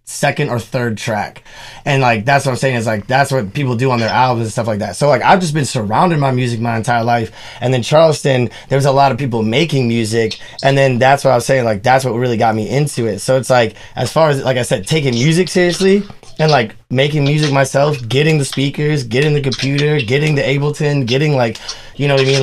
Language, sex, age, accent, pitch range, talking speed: English, male, 20-39, American, 120-145 Hz, 250 wpm